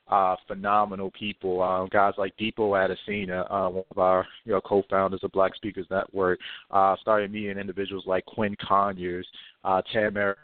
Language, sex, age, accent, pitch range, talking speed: English, male, 30-49, American, 95-110 Hz, 170 wpm